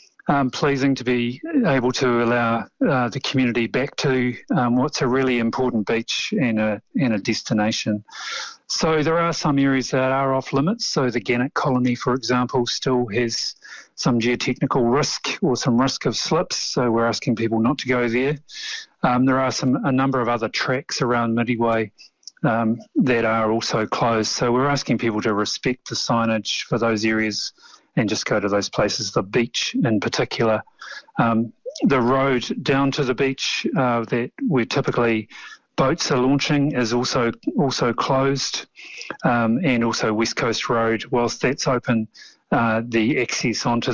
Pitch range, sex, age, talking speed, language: 115-135 Hz, male, 40-59, 170 wpm, English